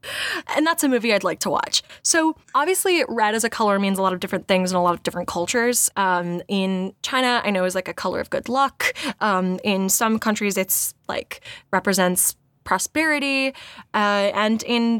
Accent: American